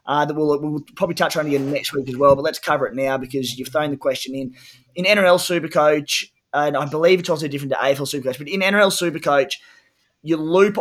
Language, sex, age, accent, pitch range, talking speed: English, male, 20-39, Australian, 135-165 Hz, 230 wpm